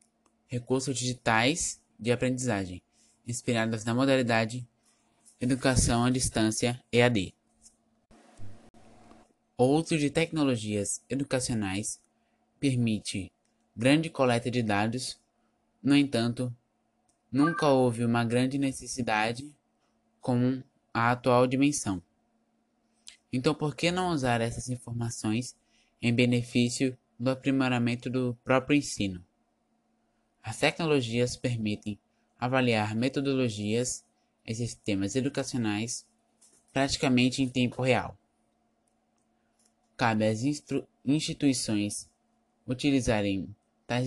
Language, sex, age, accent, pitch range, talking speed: Portuguese, male, 20-39, Brazilian, 115-130 Hz, 85 wpm